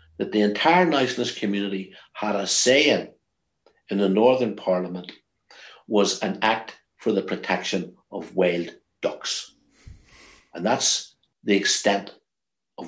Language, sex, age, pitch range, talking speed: English, male, 60-79, 95-120 Hz, 120 wpm